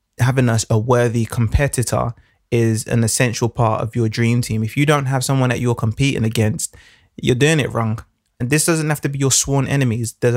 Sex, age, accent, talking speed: male, 20-39, British, 210 wpm